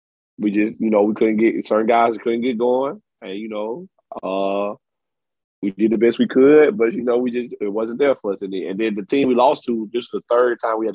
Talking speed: 250 wpm